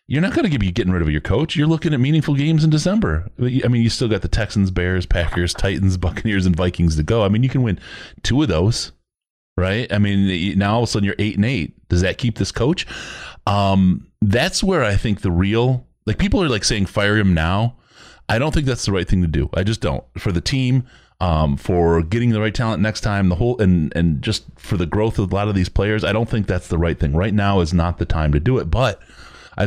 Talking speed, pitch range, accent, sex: 255 wpm, 85-115 Hz, American, male